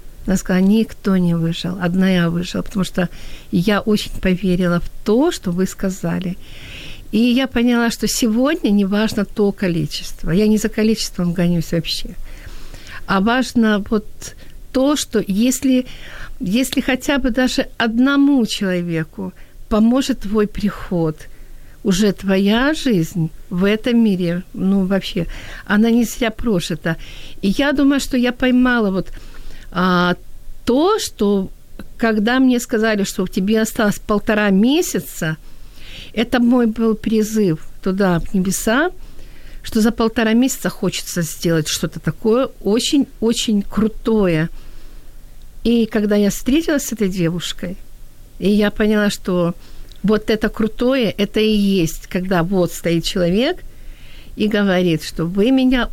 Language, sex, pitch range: Ukrainian, female, 175-230 Hz